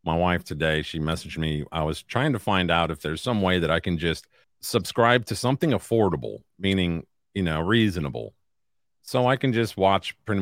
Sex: male